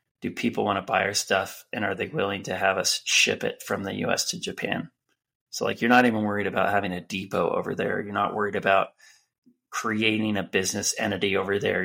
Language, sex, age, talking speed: English, male, 20-39, 225 wpm